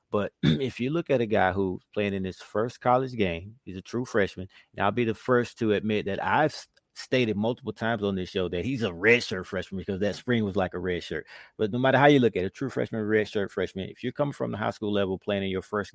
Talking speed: 280 wpm